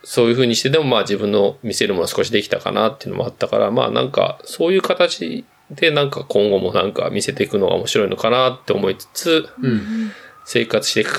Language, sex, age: Japanese, male, 20-39